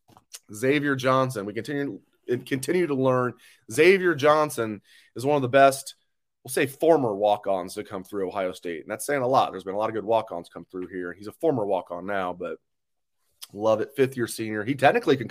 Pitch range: 105-125 Hz